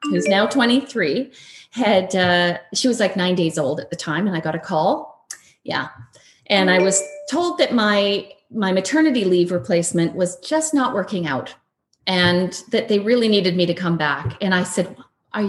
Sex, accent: female, American